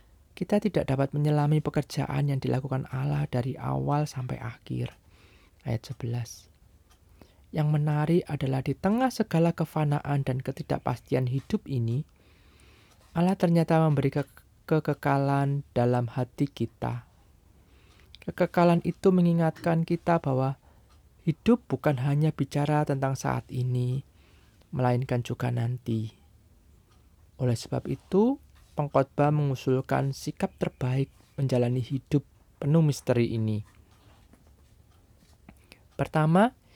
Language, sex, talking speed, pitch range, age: Indonesian, male, 100 wpm, 115-155 Hz, 20-39